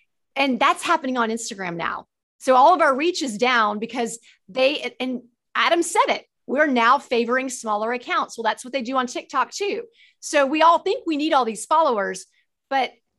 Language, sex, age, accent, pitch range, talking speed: English, female, 30-49, American, 225-280 Hz, 190 wpm